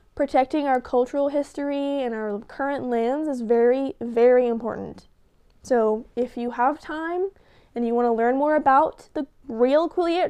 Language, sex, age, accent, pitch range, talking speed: English, female, 10-29, American, 235-295 Hz, 155 wpm